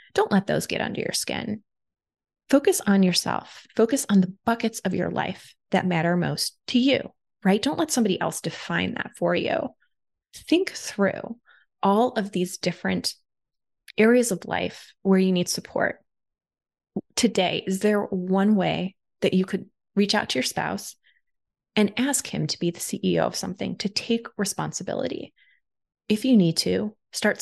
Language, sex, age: English, female, 20-39